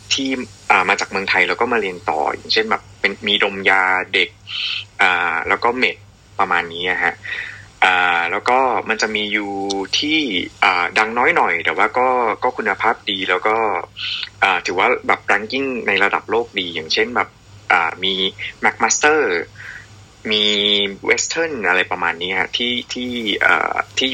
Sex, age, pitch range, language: male, 20-39, 95-115 Hz, Thai